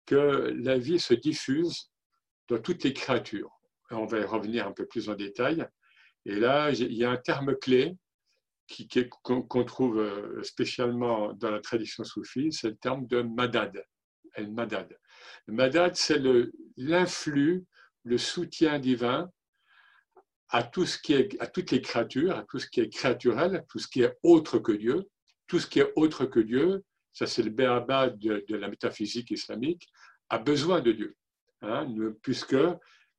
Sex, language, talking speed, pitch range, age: male, French, 170 wpm, 120-175 Hz, 60-79